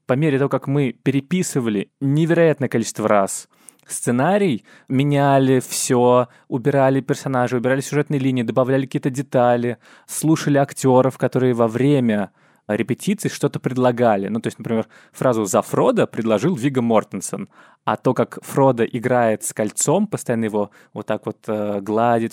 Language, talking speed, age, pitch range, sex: Russian, 140 wpm, 20-39, 115-145 Hz, male